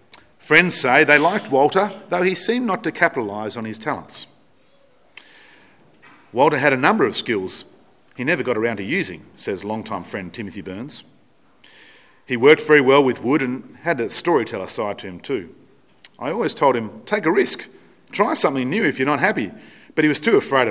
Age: 40-59